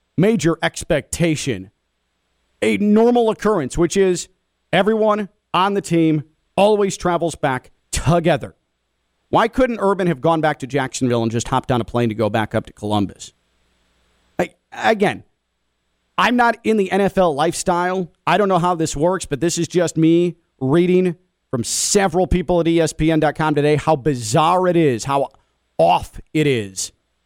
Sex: male